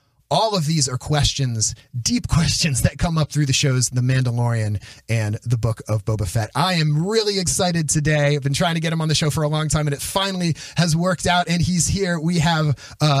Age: 30-49